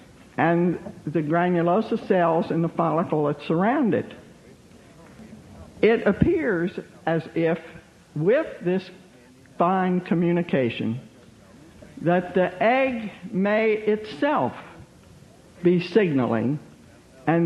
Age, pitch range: 60-79, 145-195 Hz